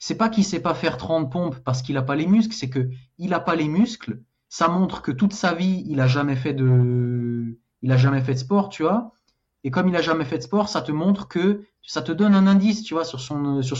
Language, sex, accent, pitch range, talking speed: French, male, French, 125-155 Hz, 270 wpm